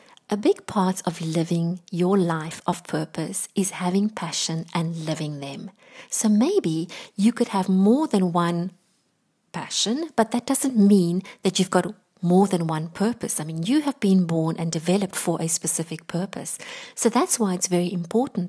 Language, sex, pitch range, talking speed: English, female, 170-225 Hz, 175 wpm